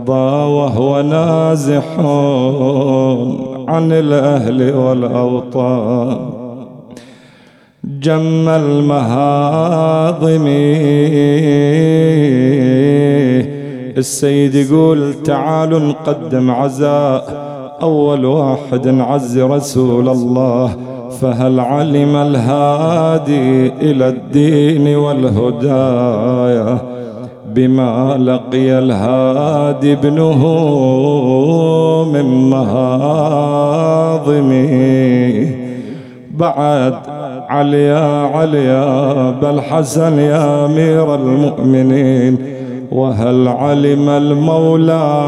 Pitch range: 130-145 Hz